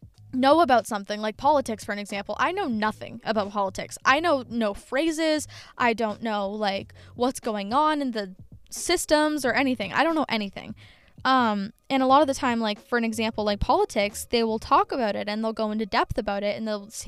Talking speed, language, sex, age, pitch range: 210 wpm, English, female, 10-29, 210-270 Hz